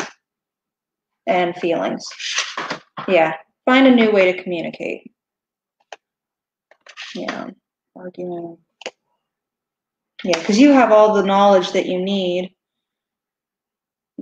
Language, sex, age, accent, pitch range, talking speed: English, female, 20-39, American, 185-225 Hz, 95 wpm